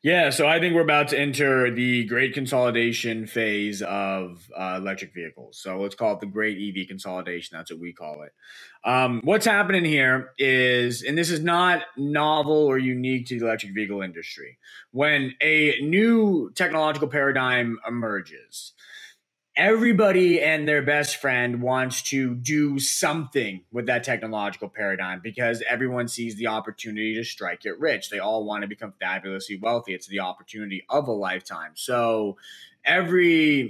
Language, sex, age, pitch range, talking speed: English, male, 20-39, 110-145 Hz, 160 wpm